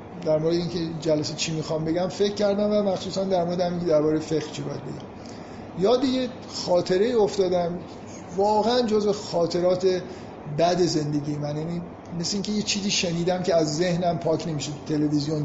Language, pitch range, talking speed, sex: Persian, 155-190 Hz, 155 wpm, male